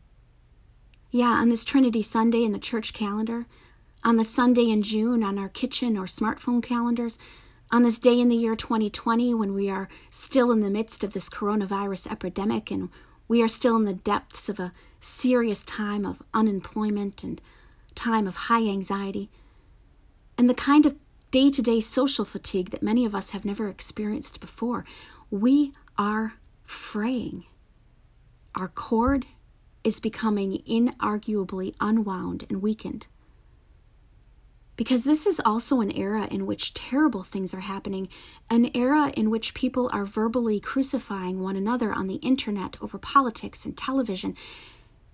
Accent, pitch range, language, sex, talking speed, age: American, 205-255 Hz, English, female, 150 wpm, 40-59